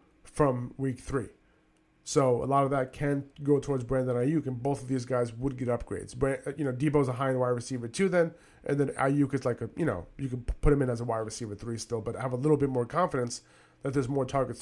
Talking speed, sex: 255 wpm, male